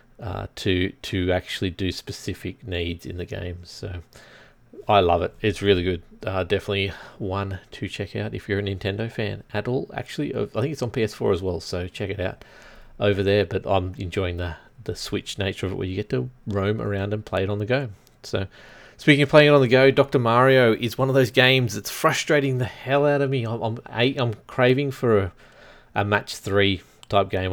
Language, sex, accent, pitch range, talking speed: English, male, Australian, 95-125 Hz, 215 wpm